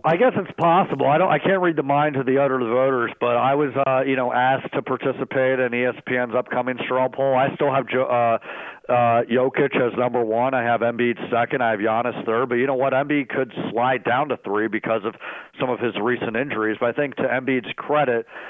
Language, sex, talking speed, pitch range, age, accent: English, male, 225 wpm, 115-140 Hz, 50-69, American